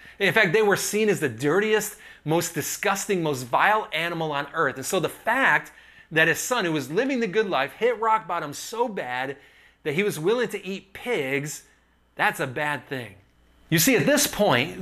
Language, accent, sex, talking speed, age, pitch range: English, American, male, 200 wpm, 30-49, 140-200 Hz